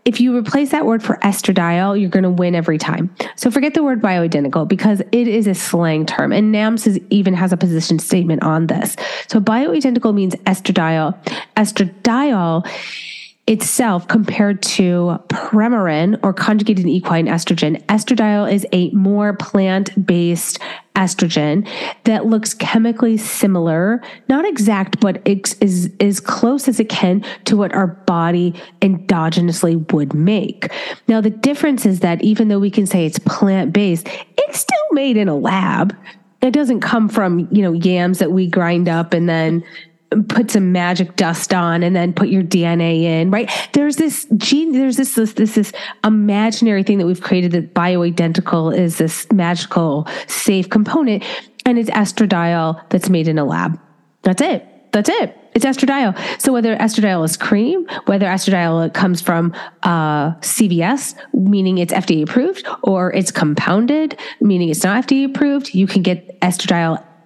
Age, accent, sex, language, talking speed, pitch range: 30-49, American, female, English, 160 wpm, 175-220 Hz